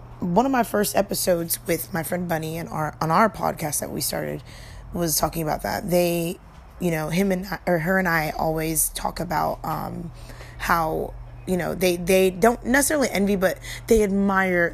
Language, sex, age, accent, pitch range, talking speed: English, female, 20-39, American, 160-200 Hz, 185 wpm